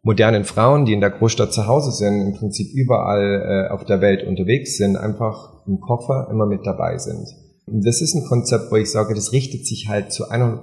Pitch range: 100-125 Hz